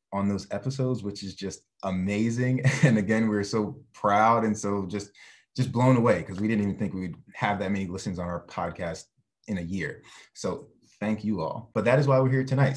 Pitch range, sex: 95-115 Hz, male